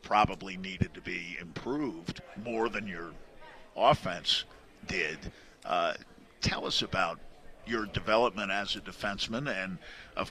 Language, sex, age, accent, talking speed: English, male, 50-69, American, 120 wpm